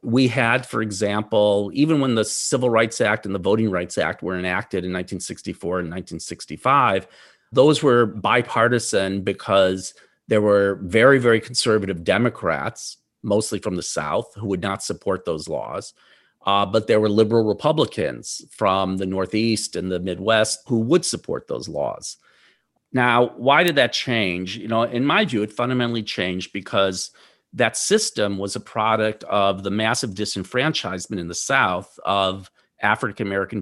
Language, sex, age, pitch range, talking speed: English, male, 40-59, 95-115 Hz, 155 wpm